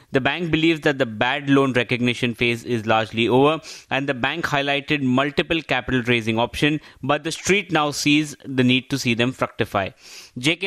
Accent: Indian